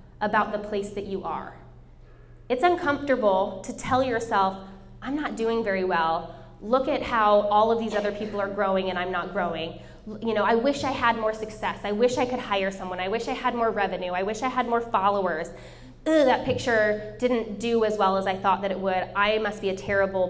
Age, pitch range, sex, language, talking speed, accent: 20-39, 195-255 Hz, female, English, 220 wpm, American